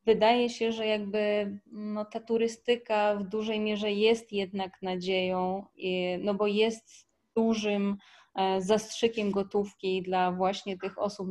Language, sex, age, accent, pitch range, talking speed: Polish, female, 20-39, native, 190-210 Hz, 125 wpm